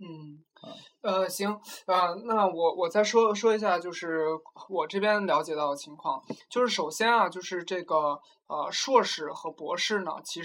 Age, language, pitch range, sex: 20-39, Chinese, 160-220 Hz, male